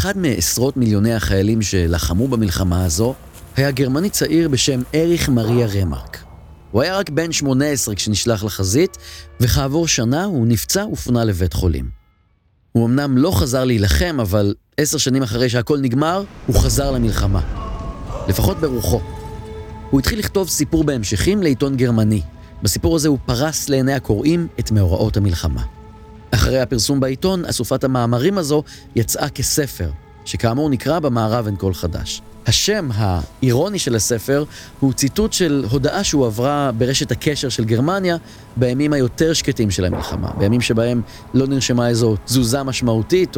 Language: Hebrew